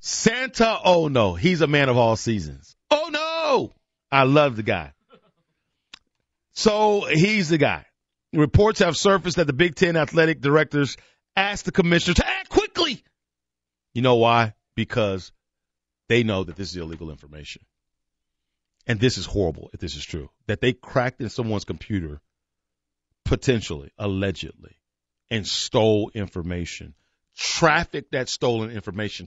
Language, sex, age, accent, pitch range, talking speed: English, male, 40-59, American, 85-140 Hz, 140 wpm